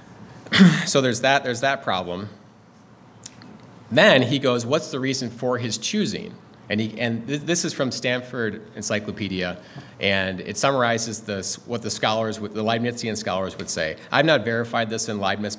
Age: 30-49